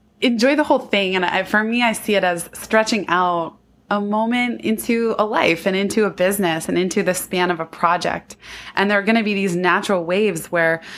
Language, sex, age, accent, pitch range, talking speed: English, female, 20-39, American, 170-210 Hz, 220 wpm